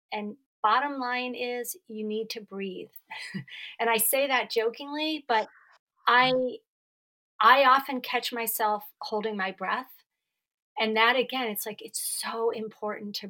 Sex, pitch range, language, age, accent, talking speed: female, 215-260 Hz, English, 40-59, American, 140 wpm